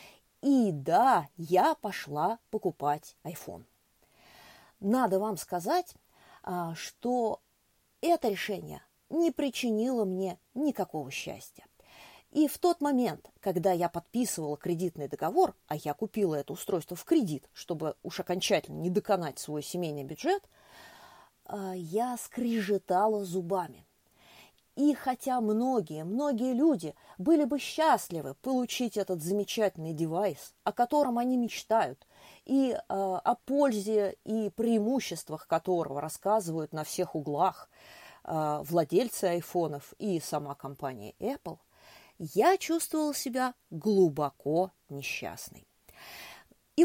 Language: Russian